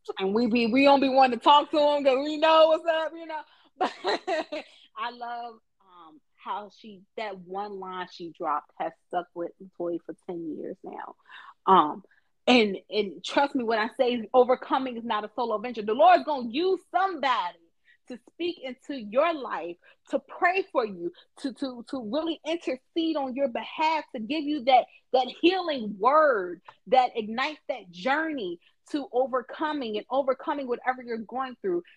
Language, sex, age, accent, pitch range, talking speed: English, female, 30-49, American, 235-305 Hz, 175 wpm